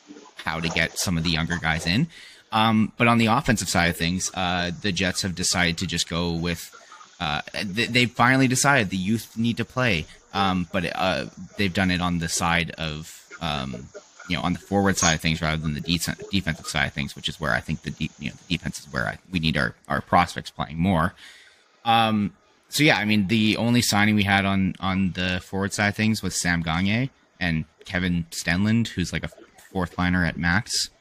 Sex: male